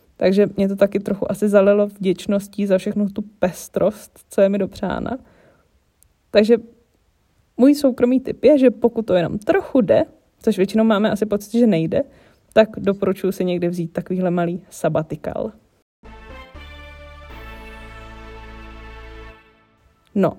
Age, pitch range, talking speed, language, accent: 20-39, 185-225 Hz, 125 wpm, Czech, native